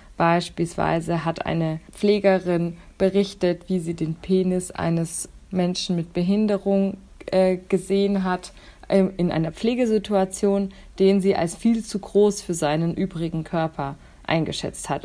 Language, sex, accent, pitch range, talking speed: German, female, German, 165-195 Hz, 125 wpm